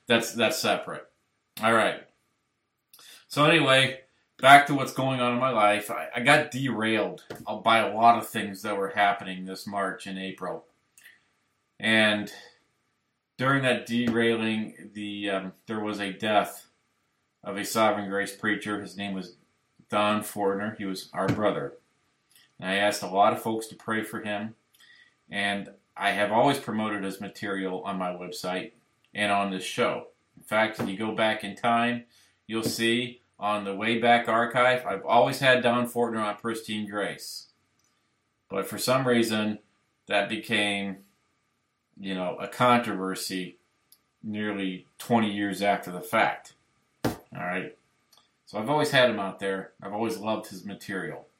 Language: English